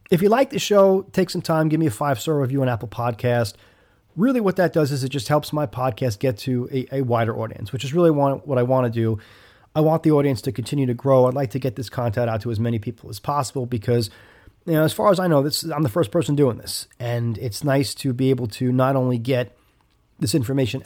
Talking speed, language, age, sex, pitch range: 255 wpm, English, 30-49, male, 120-155 Hz